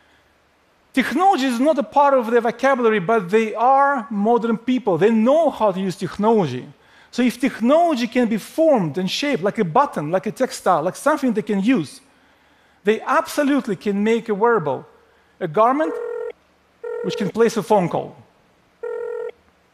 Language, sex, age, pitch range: Korean, male, 40-59, 200-265 Hz